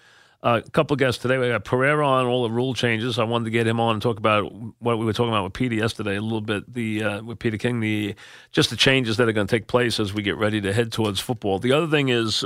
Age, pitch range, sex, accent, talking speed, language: 40-59, 110-135 Hz, male, American, 295 wpm, English